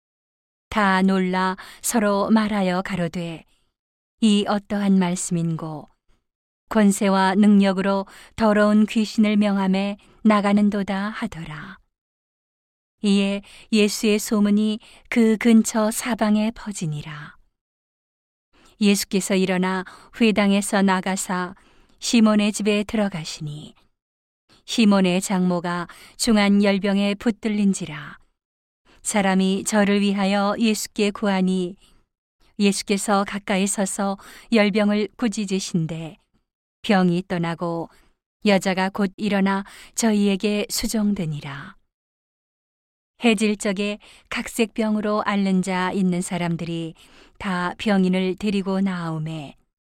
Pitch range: 185-210 Hz